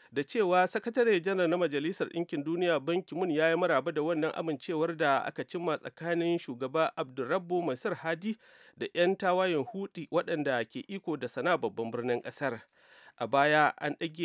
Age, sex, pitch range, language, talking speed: 40-59, male, 135-170 Hz, English, 190 wpm